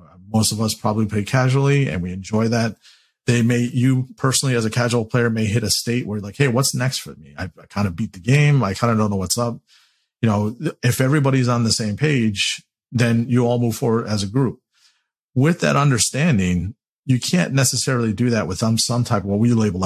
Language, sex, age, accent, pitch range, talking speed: English, male, 40-59, American, 105-125 Hz, 230 wpm